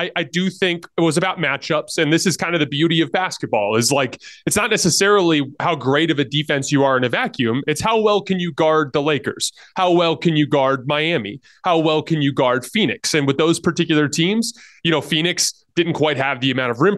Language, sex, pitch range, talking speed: English, male, 145-185 Hz, 235 wpm